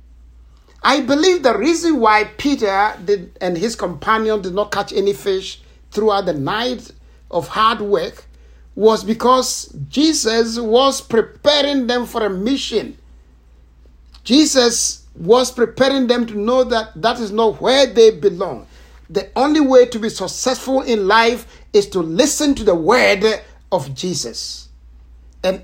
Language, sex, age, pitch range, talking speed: English, male, 60-79, 155-245 Hz, 140 wpm